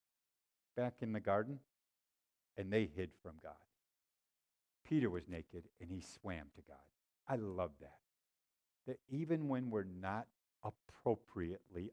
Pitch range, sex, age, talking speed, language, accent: 100-135 Hz, male, 50-69, 130 wpm, English, American